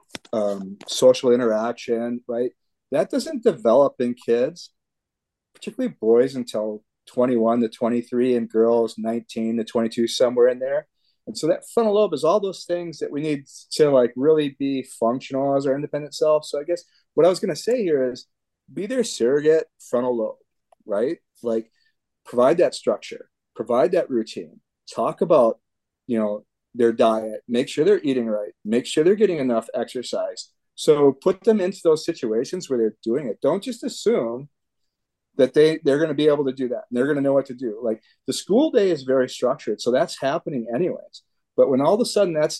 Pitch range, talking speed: 120-175 Hz, 190 wpm